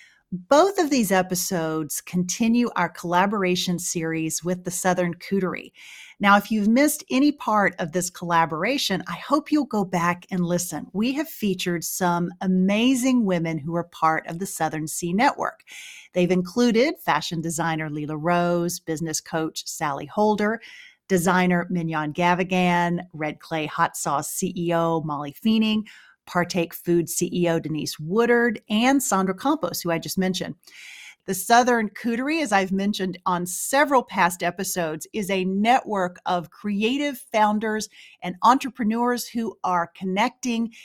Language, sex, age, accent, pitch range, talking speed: English, female, 40-59, American, 175-235 Hz, 140 wpm